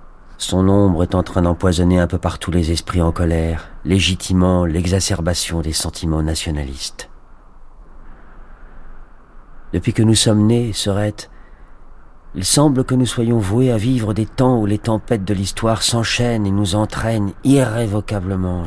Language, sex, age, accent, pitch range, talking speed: French, male, 40-59, French, 90-110 Hz, 140 wpm